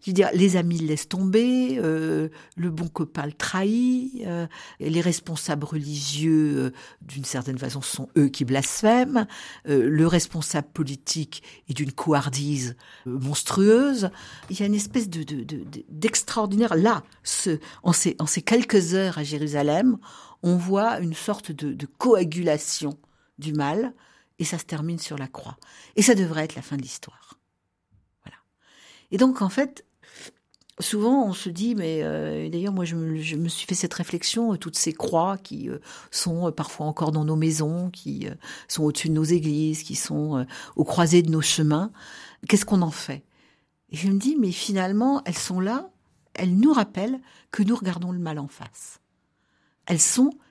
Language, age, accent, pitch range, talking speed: French, 60-79, French, 150-200 Hz, 180 wpm